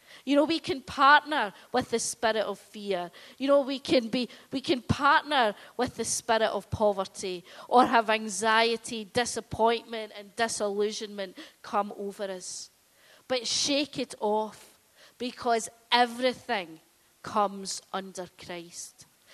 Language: English